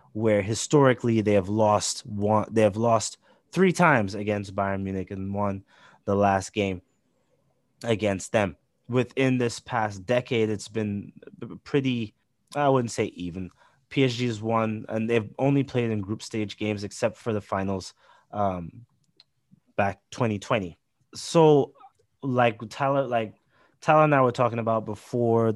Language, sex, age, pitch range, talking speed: English, male, 20-39, 100-125 Hz, 145 wpm